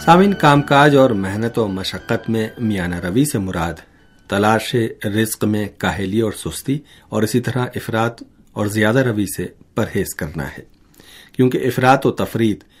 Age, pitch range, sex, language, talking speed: 50-69, 95-125 Hz, male, Urdu, 150 wpm